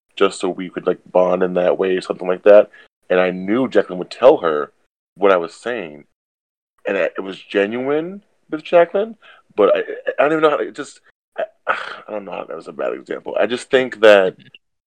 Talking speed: 220 wpm